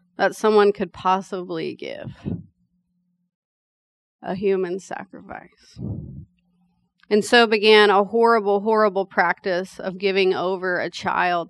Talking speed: 105 wpm